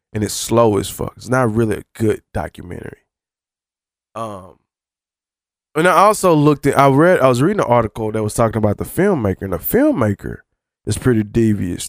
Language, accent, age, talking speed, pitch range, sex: English, American, 20-39, 180 wpm, 105-140 Hz, male